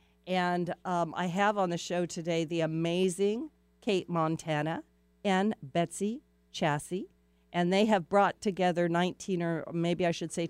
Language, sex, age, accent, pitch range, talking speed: English, female, 50-69, American, 140-175 Hz, 150 wpm